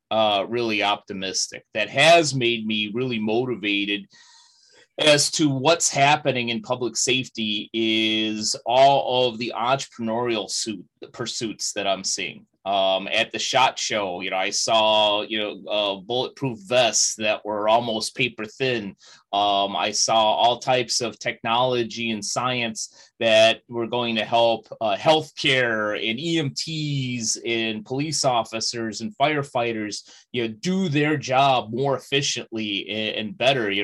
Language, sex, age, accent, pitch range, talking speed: English, male, 30-49, American, 110-130 Hz, 140 wpm